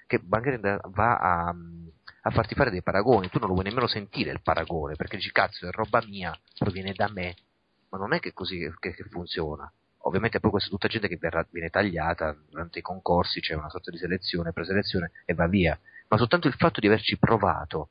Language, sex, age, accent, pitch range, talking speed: Italian, male, 40-59, native, 90-120 Hz, 215 wpm